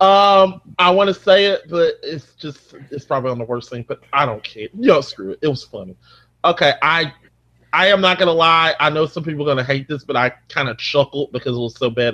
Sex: male